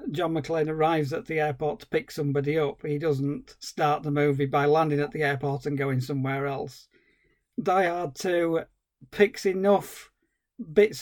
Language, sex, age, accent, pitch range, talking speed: English, male, 40-59, British, 145-165 Hz, 165 wpm